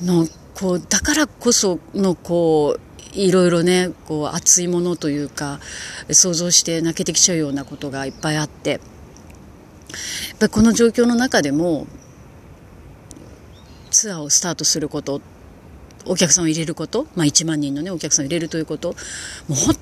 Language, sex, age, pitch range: Japanese, female, 40-59, 145-205 Hz